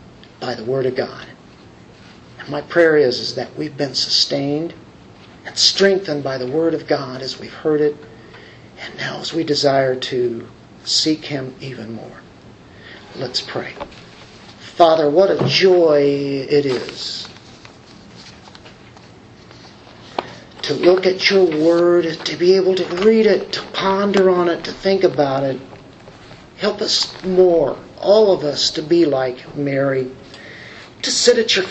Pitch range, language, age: 145-195 Hz, English, 50-69